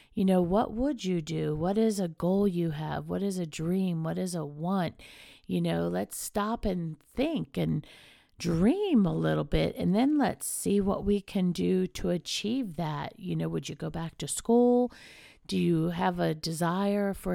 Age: 50-69